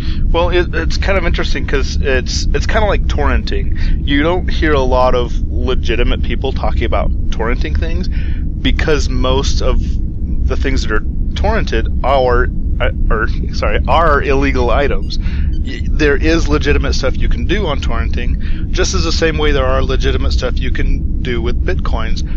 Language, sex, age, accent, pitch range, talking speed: English, male, 30-49, American, 75-80 Hz, 165 wpm